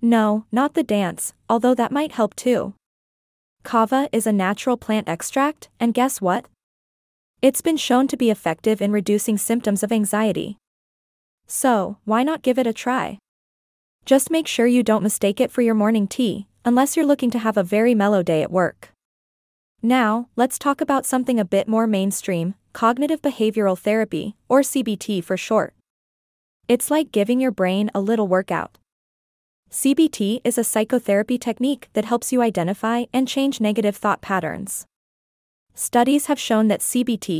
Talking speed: 160 wpm